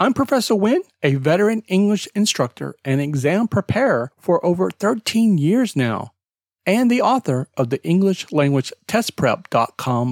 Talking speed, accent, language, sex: 125 wpm, American, English, male